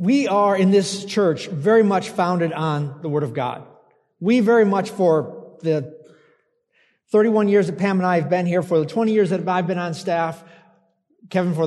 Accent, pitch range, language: American, 175-215 Hz, English